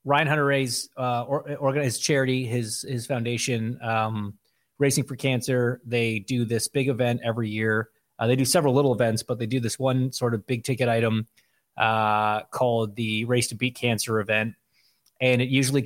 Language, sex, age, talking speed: English, male, 30-49, 185 wpm